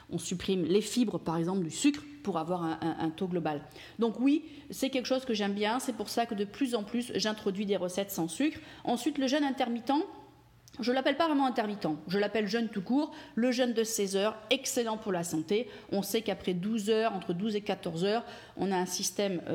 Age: 40-59